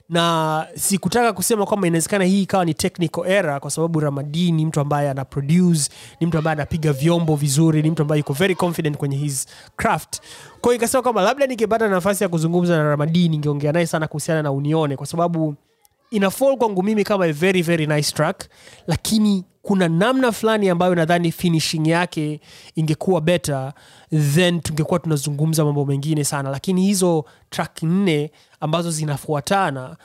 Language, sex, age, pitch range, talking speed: Swahili, male, 20-39, 150-185 Hz, 165 wpm